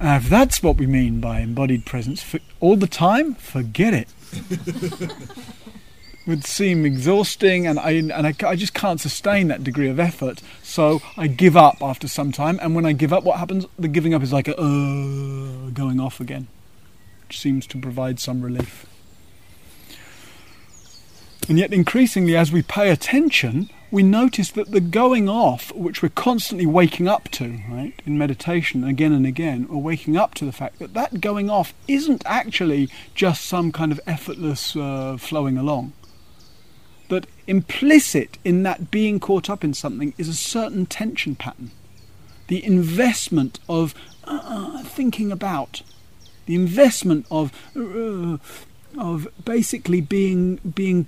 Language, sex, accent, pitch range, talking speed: English, male, British, 130-190 Hz, 155 wpm